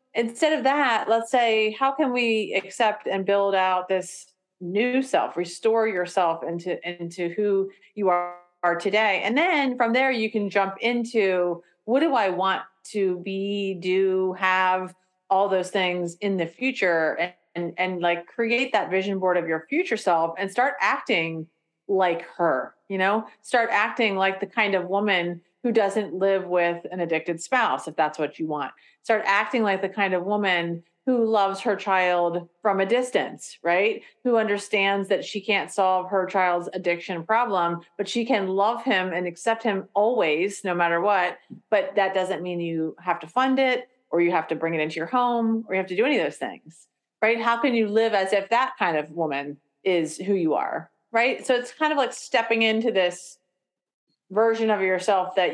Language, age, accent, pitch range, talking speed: English, 30-49, American, 175-225 Hz, 190 wpm